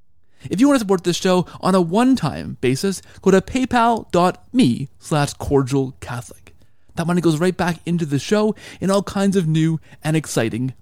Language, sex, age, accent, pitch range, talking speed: English, male, 30-49, American, 130-210 Hz, 170 wpm